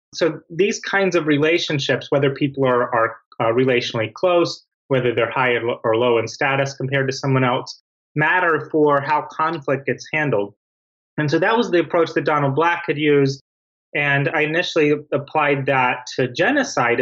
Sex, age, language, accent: male, 30-49, English, American